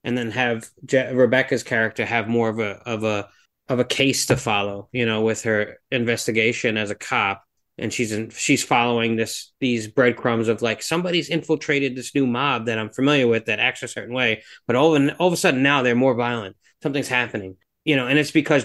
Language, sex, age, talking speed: English, male, 30-49, 215 wpm